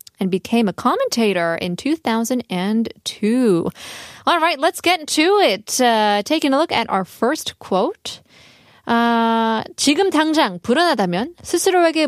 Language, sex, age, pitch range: Korean, female, 20-39, 200-285 Hz